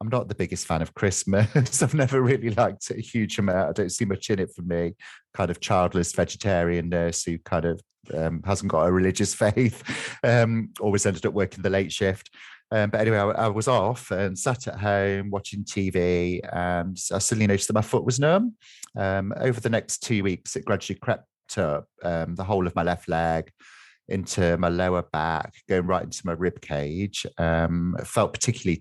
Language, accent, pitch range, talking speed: English, British, 85-115 Hz, 205 wpm